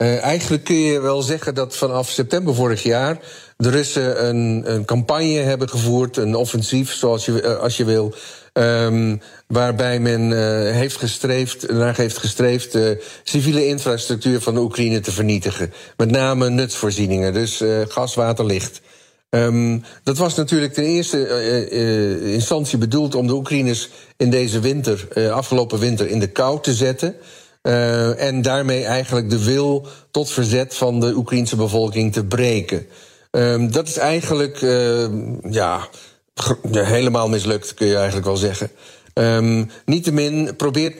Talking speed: 150 wpm